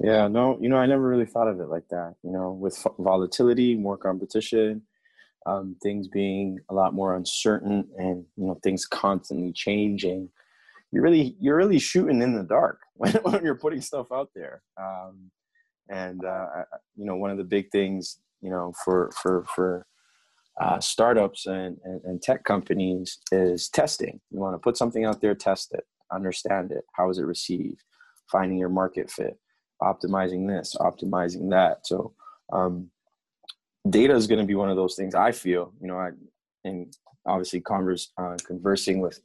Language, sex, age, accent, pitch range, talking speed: English, male, 20-39, American, 90-110 Hz, 175 wpm